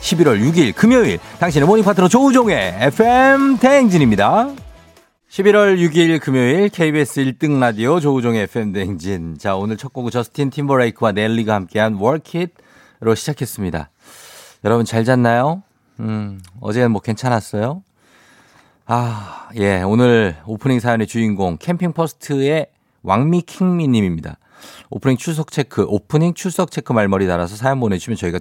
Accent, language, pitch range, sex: native, Korean, 105-160 Hz, male